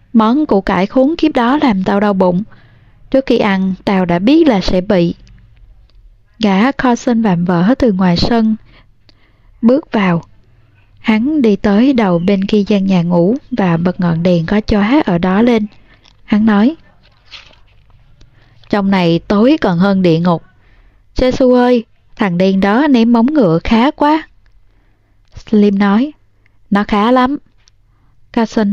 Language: Vietnamese